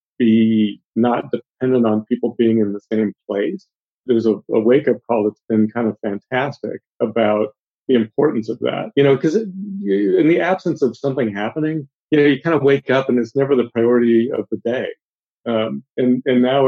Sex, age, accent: male, 40-59, American